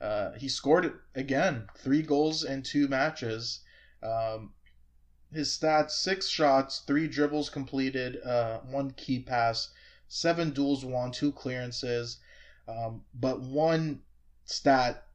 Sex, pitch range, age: male, 110-135 Hz, 20-39